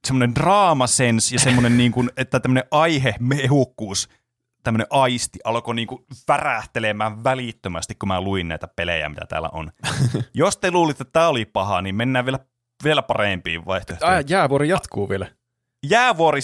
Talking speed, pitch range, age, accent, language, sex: 130 wpm, 110-150 Hz, 30-49, native, Finnish, male